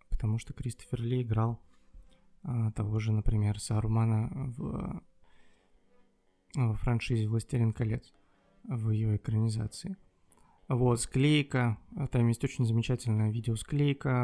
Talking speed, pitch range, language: 105 wpm, 110-125 Hz, Russian